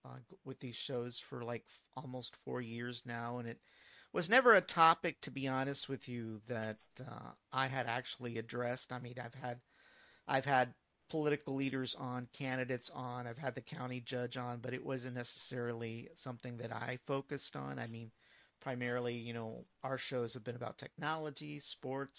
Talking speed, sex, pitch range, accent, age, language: 180 wpm, male, 120-140 Hz, American, 40-59, English